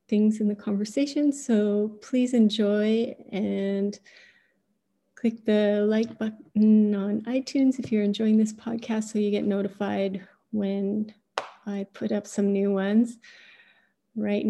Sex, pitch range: female, 200-230 Hz